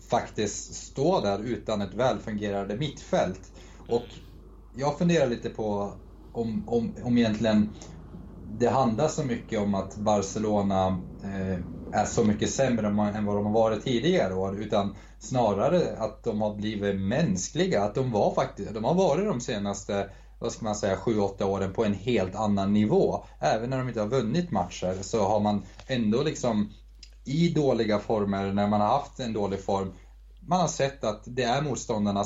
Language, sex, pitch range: Swedish, male, 95-120 Hz